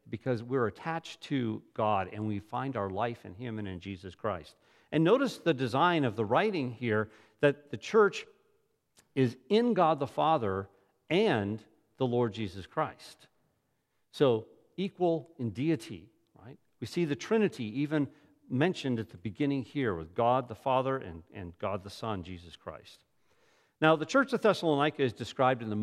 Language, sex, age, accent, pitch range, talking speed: English, male, 50-69, American, 110-160 Hz, 165 wpm